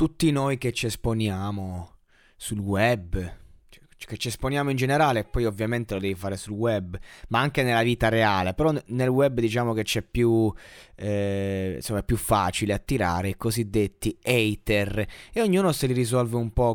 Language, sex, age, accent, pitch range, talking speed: Italian, male, 20-39, native, 105-145 Hz, 170 wpm